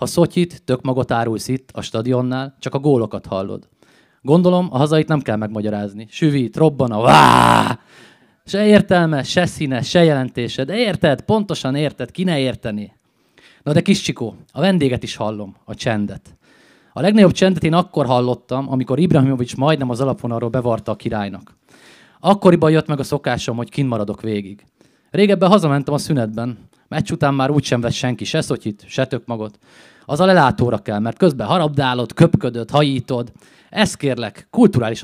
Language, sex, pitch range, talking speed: Hungarian, male, 115-155 Hz, 160 wpm